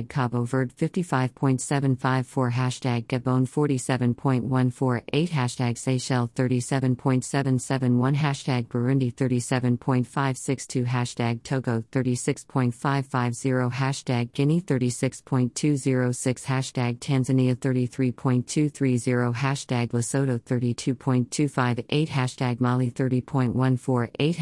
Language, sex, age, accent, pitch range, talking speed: English, female, 40-59, American, 125-140 Hz, 65 wpm